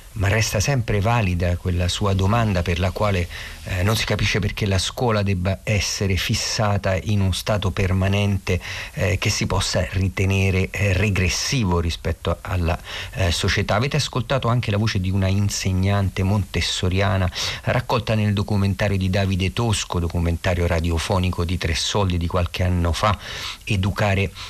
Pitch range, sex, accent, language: 90-105 Hz, male, native, Italian